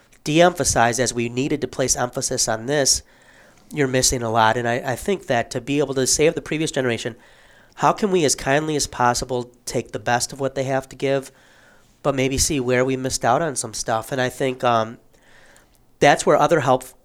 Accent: American